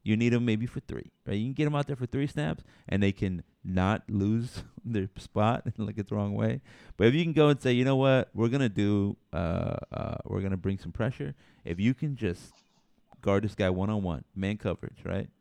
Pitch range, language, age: 95-115 Hz, English, 30-49